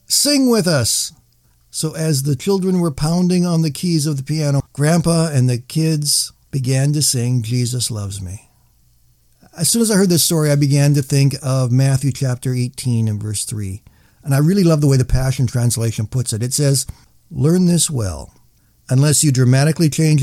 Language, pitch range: English, 115-145 Hz